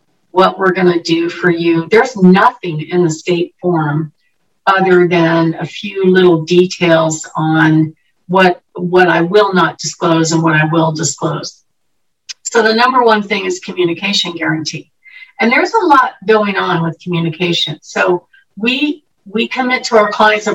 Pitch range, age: 175-235 Hz, 50-69